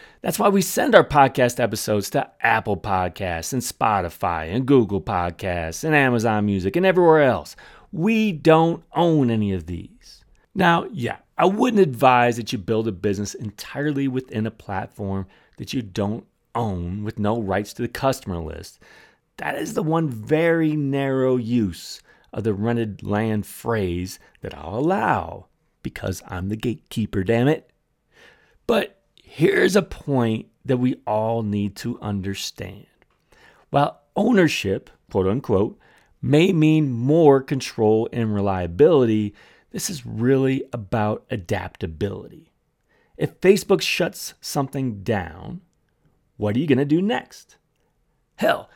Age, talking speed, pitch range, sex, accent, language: 30-49, 135 wpm, 105-150 Hz, male, American, English